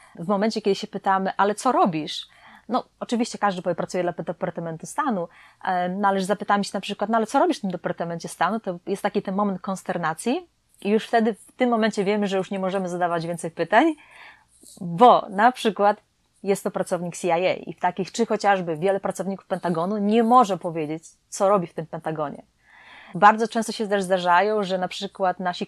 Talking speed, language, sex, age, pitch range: 185 wpm, Polish, female, 30-49, 180-210 Hz